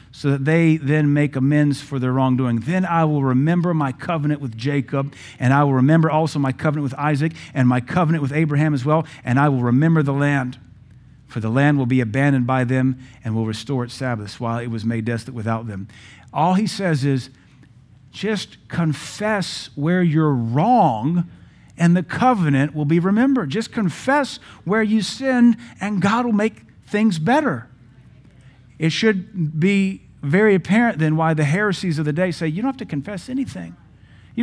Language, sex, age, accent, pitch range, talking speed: English, male, 50-69, American, 125-180 Hz, 185 wpm